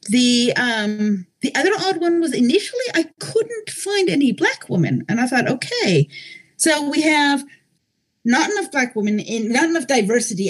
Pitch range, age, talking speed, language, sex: 205-295 Hz, 40-59, 165 wpm, English, female